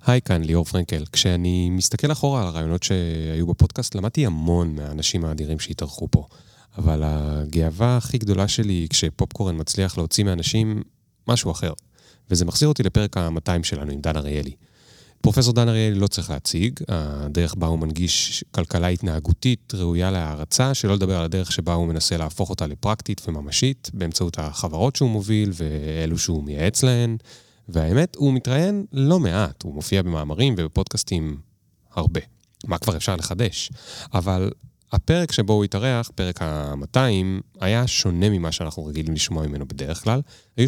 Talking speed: 145 wpm